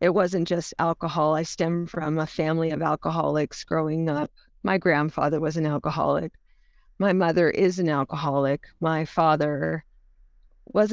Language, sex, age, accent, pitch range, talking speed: English, female, 40-59, American, 155-190 Hz, 145 wpm